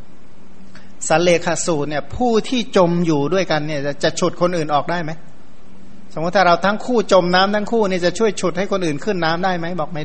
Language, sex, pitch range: Thai, male, 155-185 Hz